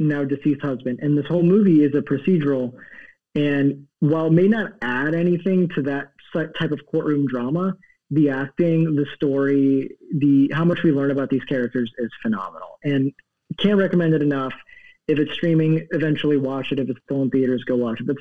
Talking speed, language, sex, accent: 185 wpm, English, male, American